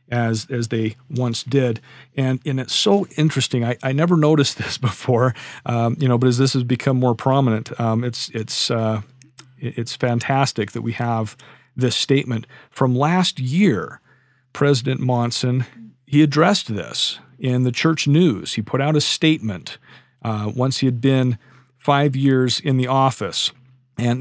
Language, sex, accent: English, male, American